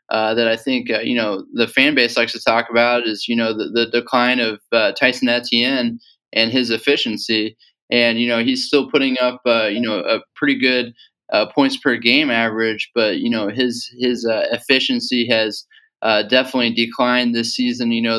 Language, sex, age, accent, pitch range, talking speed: English, male, 20-39, American, 115-135 Hz, 200 wpm